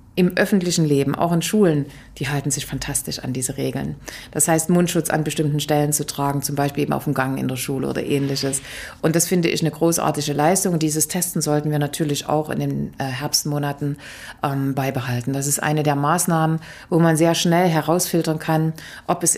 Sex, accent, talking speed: female, German, 190 wpm